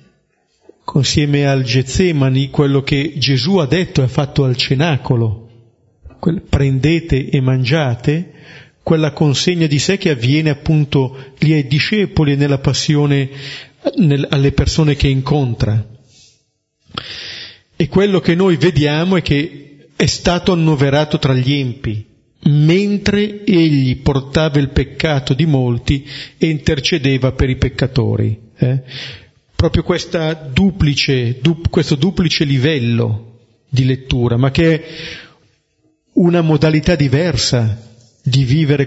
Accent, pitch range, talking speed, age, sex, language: native, 130-160 Hz, 110 wpm, 40-59, male, Italian